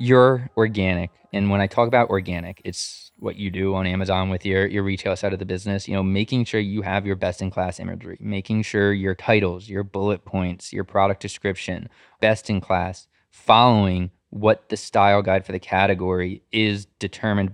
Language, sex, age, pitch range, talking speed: English, male, 20-39, 95-115 Hz, 190 wpm